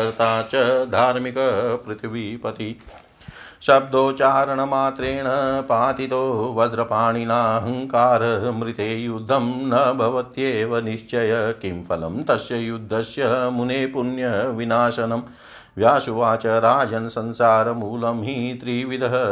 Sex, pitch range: male, 115-125 Hz